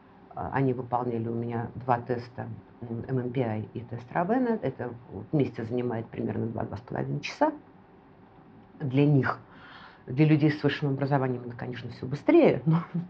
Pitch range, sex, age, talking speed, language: 120-160 Hz, female, 50-69, 130 wpm, Russian